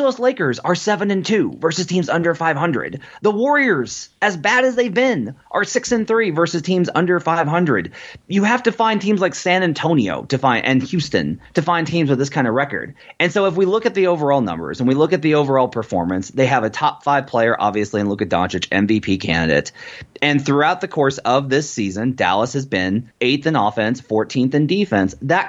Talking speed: 210 wpm